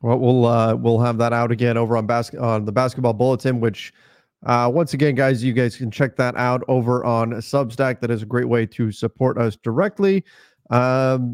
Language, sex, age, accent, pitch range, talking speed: English, male, 30-49, American, 120-160 Hz, 205 wpm